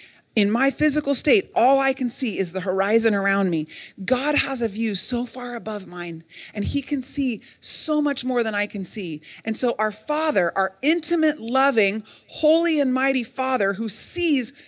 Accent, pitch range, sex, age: American, 210-280 Hz, female, 30-49